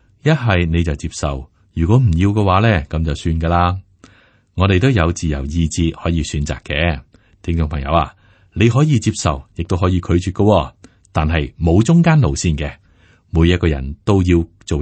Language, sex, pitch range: Chinese, male, 80-105 Hz